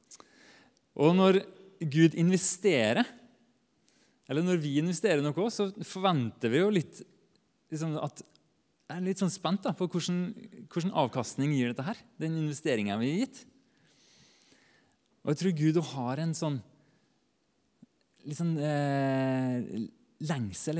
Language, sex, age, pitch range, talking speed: English, male, 30-49, 135-185 Hz, 105 wpm